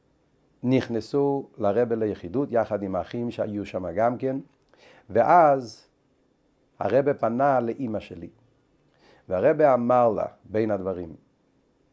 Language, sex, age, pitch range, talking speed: Hebrew, male, 50-69, 105-135 Hz, 100 wpm